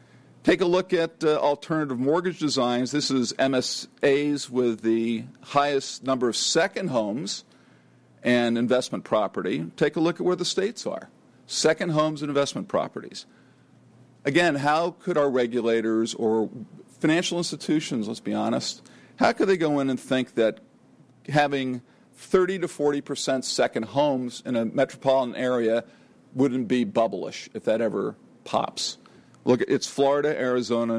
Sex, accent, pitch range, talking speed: male, American, 120-155 Hz, 145 wpm